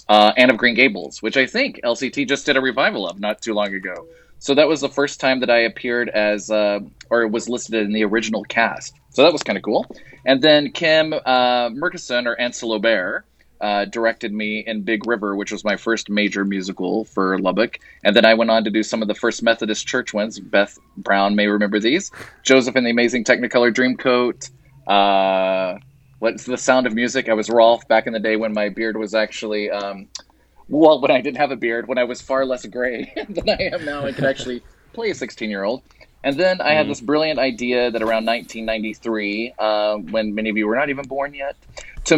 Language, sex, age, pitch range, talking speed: English, male, 20-39, 105-130 Hz, 215 wpm